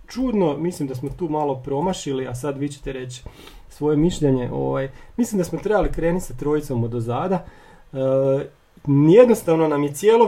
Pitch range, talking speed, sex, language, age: 135-170 Hz, 170 wpm, male, Croatian, 30-49